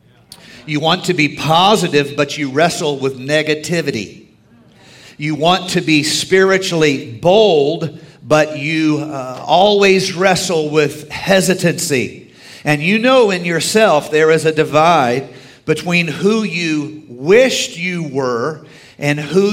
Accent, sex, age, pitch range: American, male, 50-69, 145-175 Hz